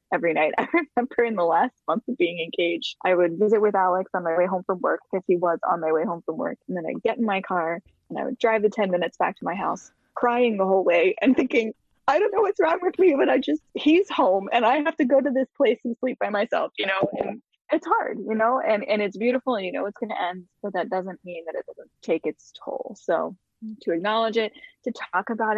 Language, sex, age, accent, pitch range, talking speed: English, female, 20-39, American, 180-235 Hz, 265 wpm